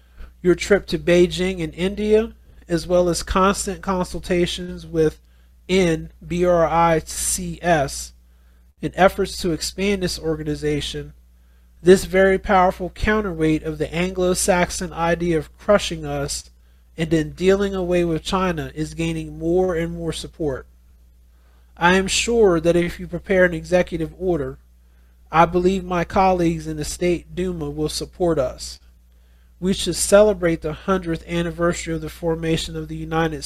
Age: 40-59